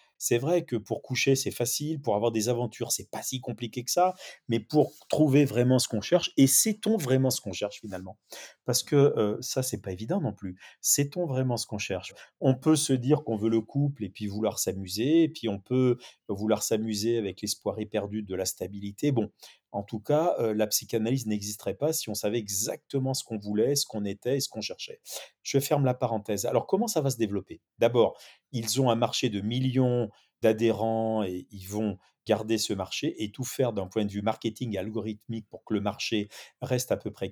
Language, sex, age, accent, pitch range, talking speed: French, male, 30-49, French, 105-135 Hz, 215 wpm